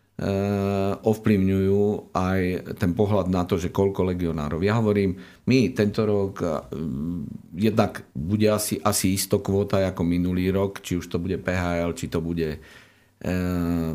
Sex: male